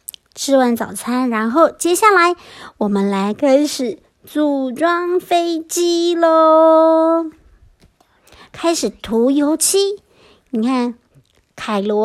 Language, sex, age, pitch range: Chinese, male, 50-69, 235-330 Hz